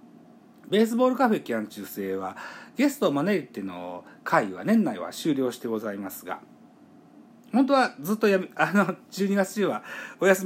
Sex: male